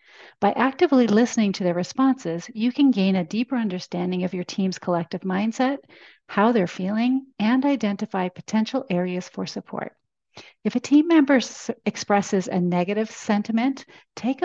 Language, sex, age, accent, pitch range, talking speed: English, female, 40-59, American, 180-235 Hz, 145 wpm